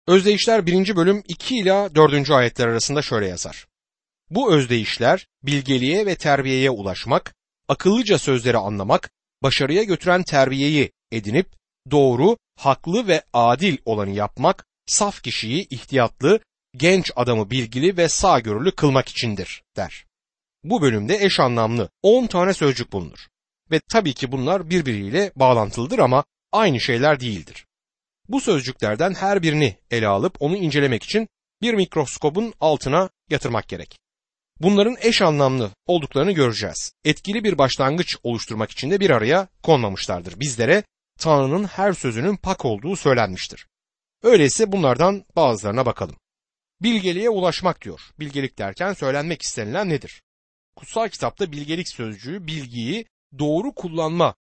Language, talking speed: Turkish, 125 wpm